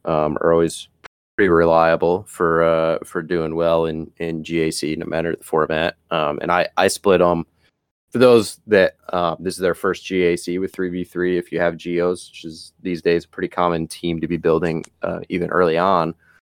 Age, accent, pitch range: 20-39, American, 80-95 Hz